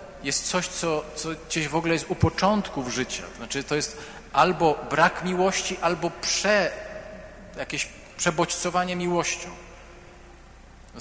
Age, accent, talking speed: 40-59, native, 125 wpm